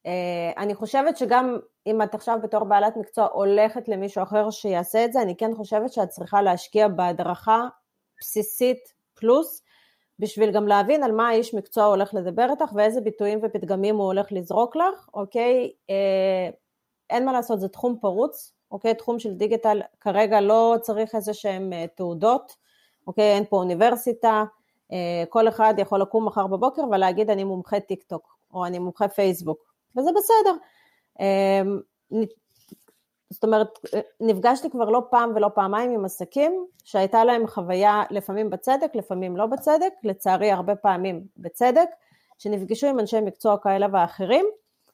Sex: female